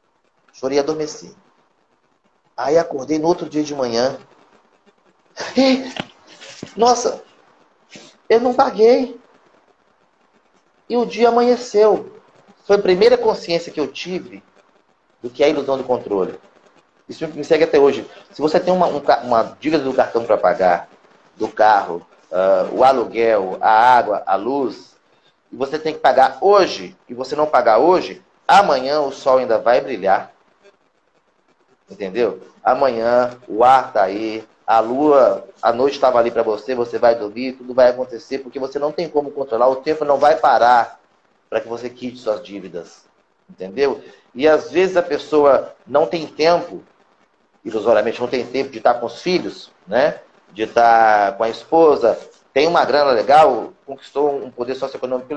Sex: male